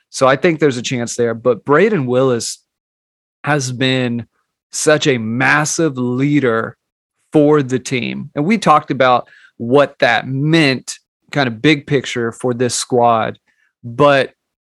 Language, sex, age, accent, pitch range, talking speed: English, male, 30-49, American, 125-145 Hz, 140 wpm